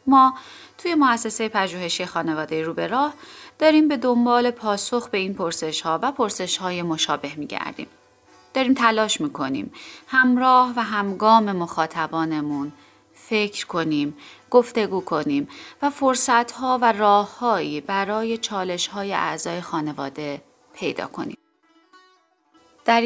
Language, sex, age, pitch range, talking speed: Persian, female, 30-49, 175-260 Hz, 115 wpm